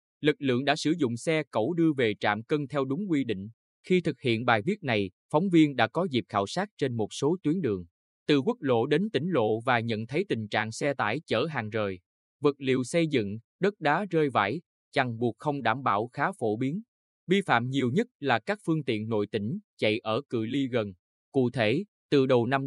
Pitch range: 110-155 Hz